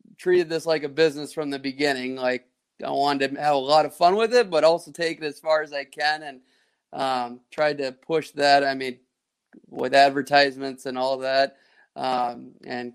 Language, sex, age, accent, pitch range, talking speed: English, male, 30-49, American, 130-155 Hz, 200 wpm